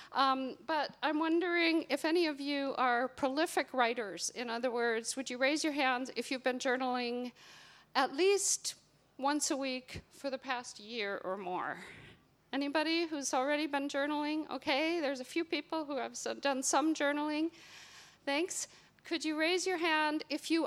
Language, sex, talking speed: English, female, 165 wpm